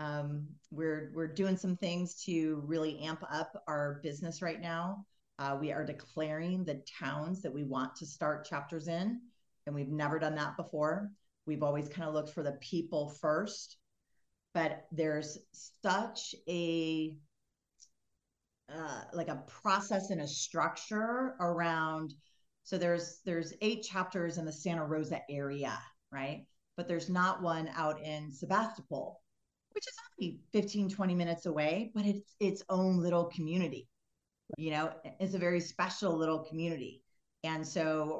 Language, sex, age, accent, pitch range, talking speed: English, female, 40-59, American, 150-175 Hz, 150 wpm